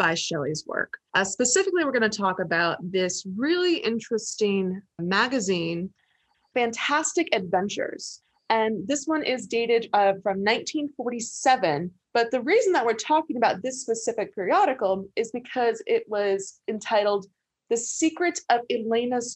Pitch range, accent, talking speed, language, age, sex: 195-260 Hz, American, 135 wpm, English, 20-39, female